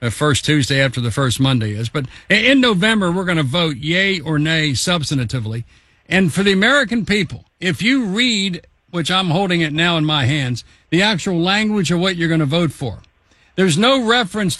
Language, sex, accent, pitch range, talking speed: English, male, American, 145-195 Hz, 195 wpm